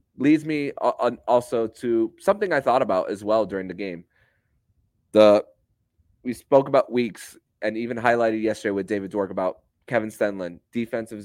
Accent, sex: American, male